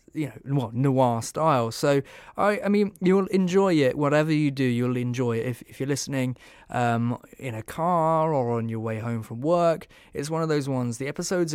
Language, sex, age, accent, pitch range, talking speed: English, male, 20-39, British, 125-155 Hz, 205 wpm